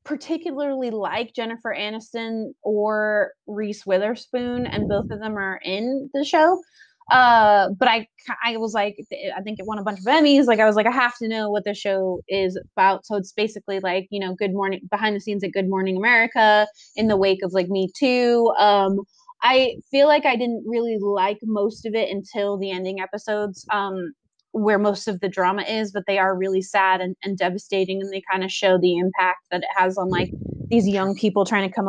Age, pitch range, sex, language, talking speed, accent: 20-39, 195-235 Hz, female, English, 210 wpm, American